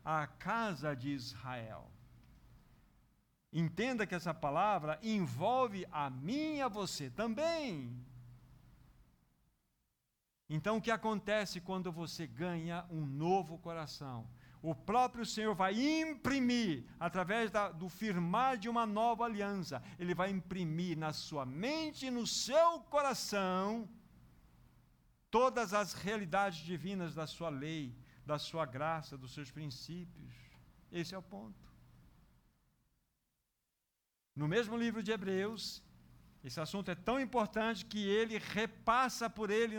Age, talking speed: 60-79, 120 wpm